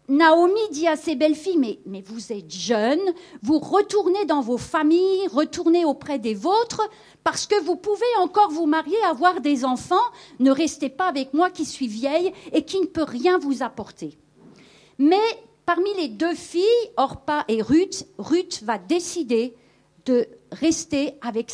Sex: female